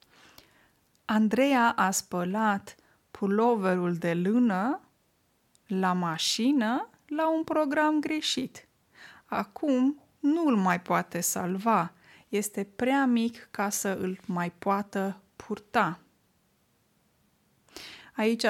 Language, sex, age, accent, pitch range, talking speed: Romanian, female, 20-39, native, 200-255 Hz, 90 wpm